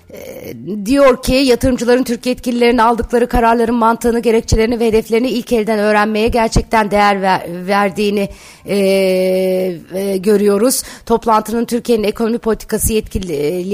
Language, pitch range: Turkish, 205-235 Hz